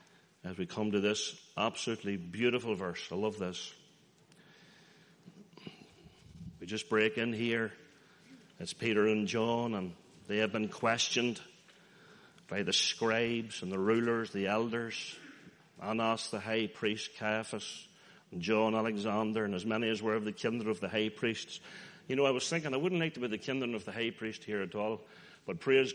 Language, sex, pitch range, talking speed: English, male, 105-140 Hz, 175 wpm